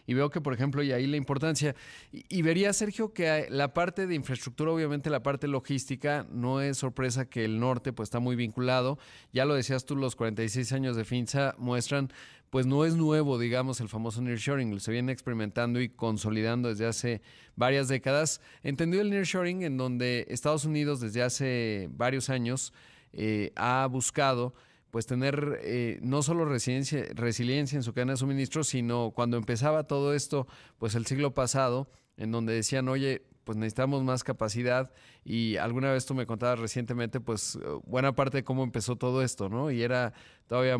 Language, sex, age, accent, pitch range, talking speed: Spanish, male, 30-49, Mexican, 120-140 Hz, 175 wpm